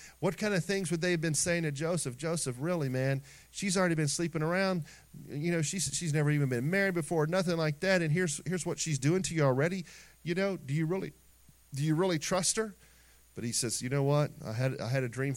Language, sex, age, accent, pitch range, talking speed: English, male, 40-59, American, 125-175 Hz, 240 wpm